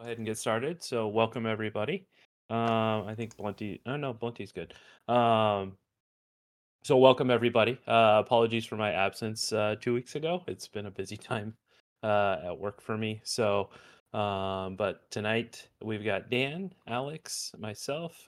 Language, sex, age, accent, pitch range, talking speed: English, male, 30-49, American, 100-120 Hz, 155 wpm